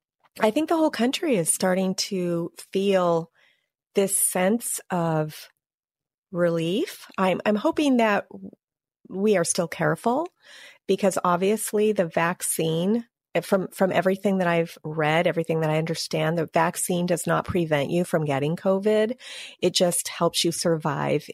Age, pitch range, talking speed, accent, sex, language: 40-59, 165-205 Hz, 140 wpm, American, female, English